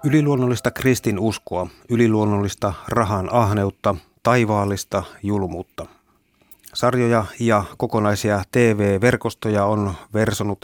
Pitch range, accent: 100-120 Hz, native